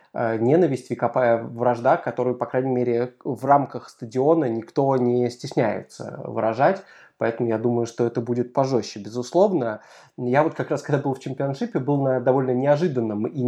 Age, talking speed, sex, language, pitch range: 20-39, 155 wpm, male, Russian, 115-145 Hz